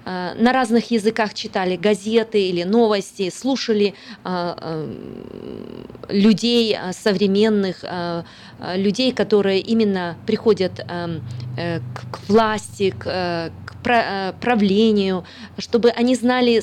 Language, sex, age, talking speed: Russian, female, 20-39, 95 wpm